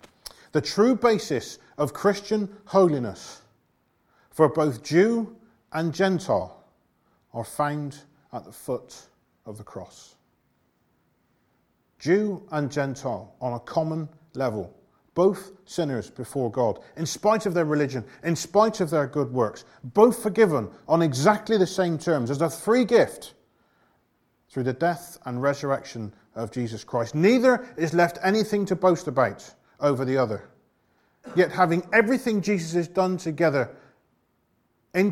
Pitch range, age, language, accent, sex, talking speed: 125-185 Hz, 40-59, English, British, male, 135 wpm